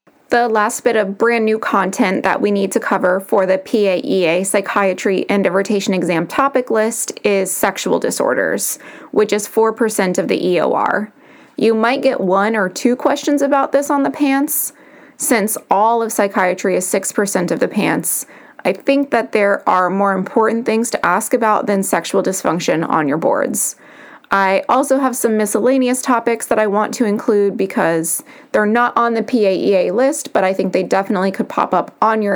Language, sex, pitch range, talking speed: English, female, 200-250 Hz, 180 wpm